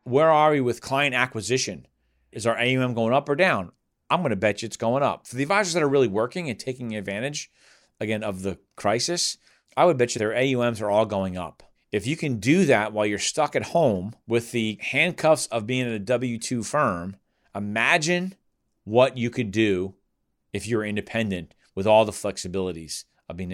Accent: American